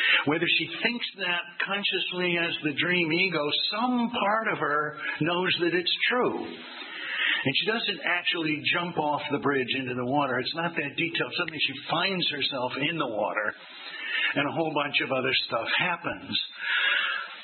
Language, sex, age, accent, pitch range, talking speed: English, male, 60-79, American, 130-170 Hz, 160 wpm